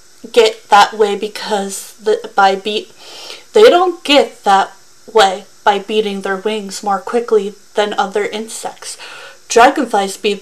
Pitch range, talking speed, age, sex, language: 205-305 Hz, 130 wpm, 30-49, female, English